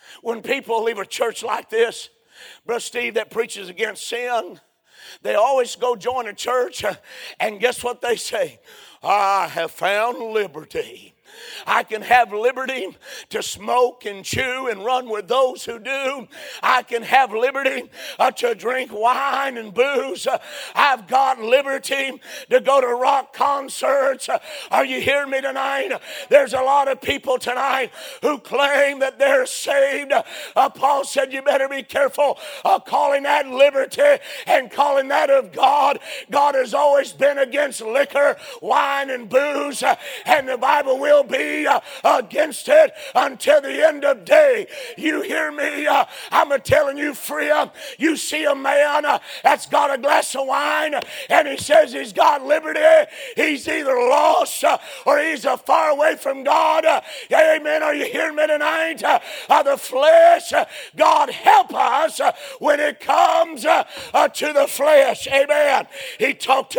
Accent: American